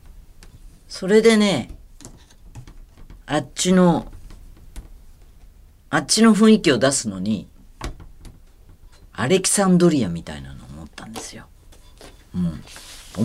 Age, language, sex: 40-59, Japanese, female